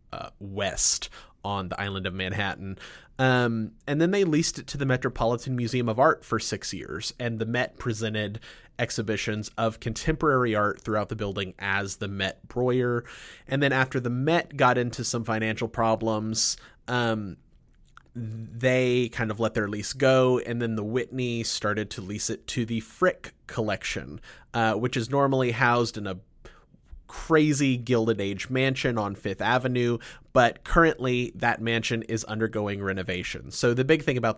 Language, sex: English, male